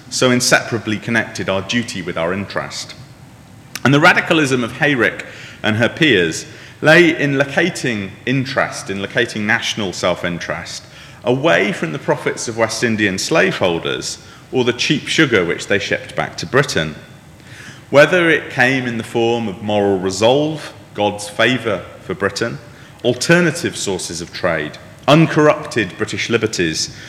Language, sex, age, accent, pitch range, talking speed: English, male, 30-49, British, 105-150 Hz, 135 wpm